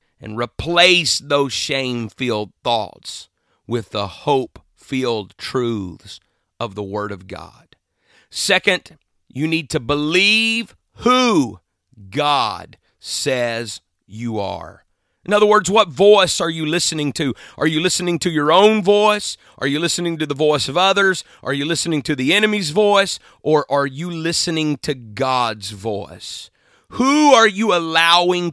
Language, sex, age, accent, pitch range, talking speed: English, male, 40-59, American, 130-190 Hz, 140 wpm